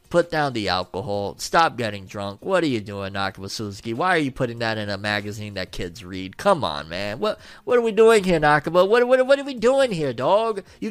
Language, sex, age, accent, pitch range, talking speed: English, male, 30-49, American, 110-160 Hz, 235 wpm